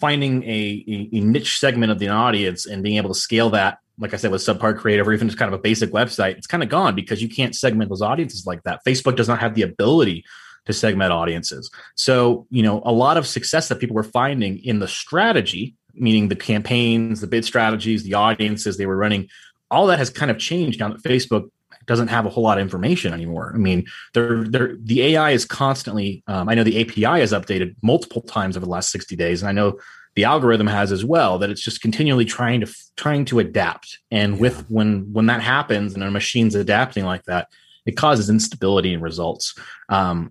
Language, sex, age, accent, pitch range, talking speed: English, male, 30-49, American, 105-125 Hz, 220 wpm